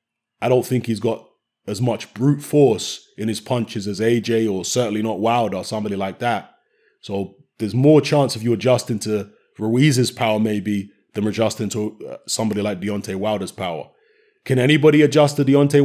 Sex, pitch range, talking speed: male, 110-135 Hz, 175 wpm